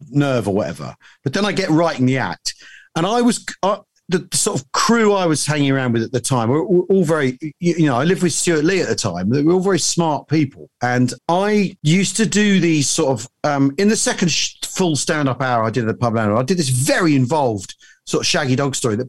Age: 40-59